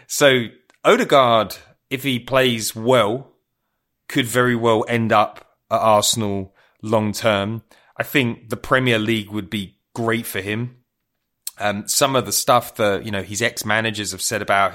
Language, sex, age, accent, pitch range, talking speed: English, male, 30-49, British, 105-125 Hz, 155 wpm